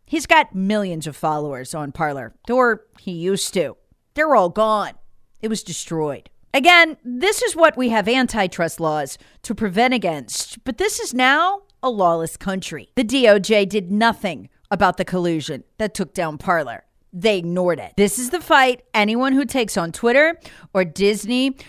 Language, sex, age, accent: English, female, 40-59, American